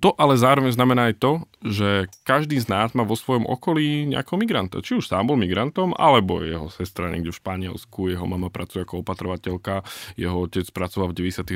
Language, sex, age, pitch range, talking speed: Slovak, male, 20-39, 95-115 Hz, 190 wpm